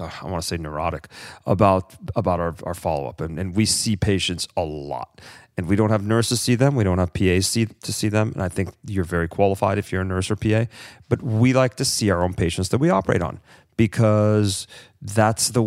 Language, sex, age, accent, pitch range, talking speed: English, male, 40-59, American, 95-125 Hz, 225 wpm